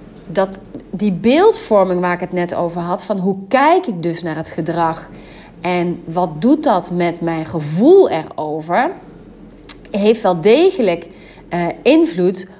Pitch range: 175-250 Hz